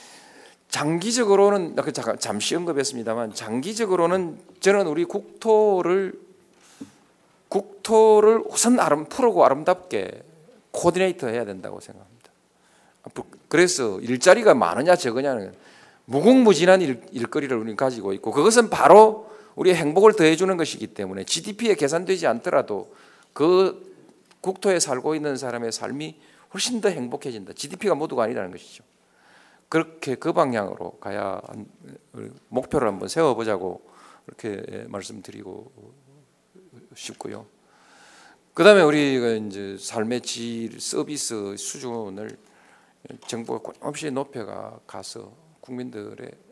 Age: 40-59